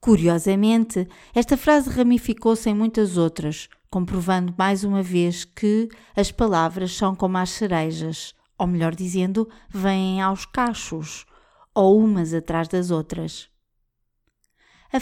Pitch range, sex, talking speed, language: 175-220 Hz, female, 120 wpm, Portuguese